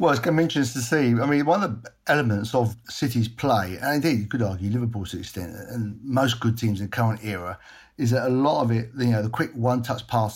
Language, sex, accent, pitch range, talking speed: English, male, British, 115-135 Hz, 260 wpm